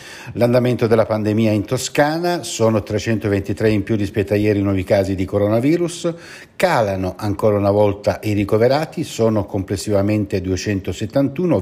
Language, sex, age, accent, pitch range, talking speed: Italian, male, 60-79, native, 100-125 Hz, 135 wpm